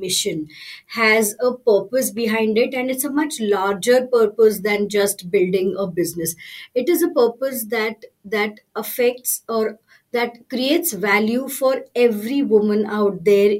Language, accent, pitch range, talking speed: English, Indian, 205-250 Hz, 145 wpm